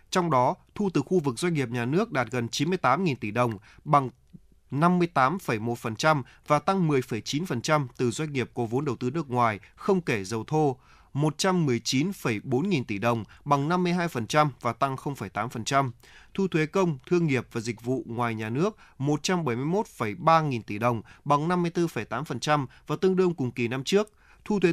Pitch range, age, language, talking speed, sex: 120-165 Hz, 20-39, Vietnamese, 160 wpm, male